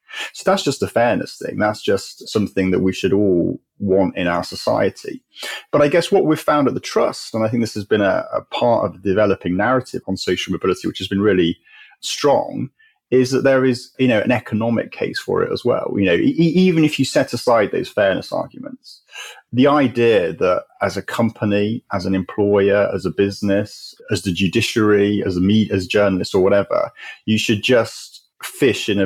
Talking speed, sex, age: 205 wpm, male, 30-49